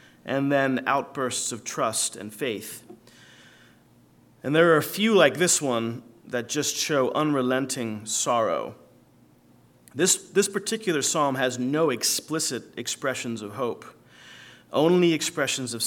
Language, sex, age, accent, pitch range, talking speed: English, male, 30-49, American, 125-160 Hz, 125 wpm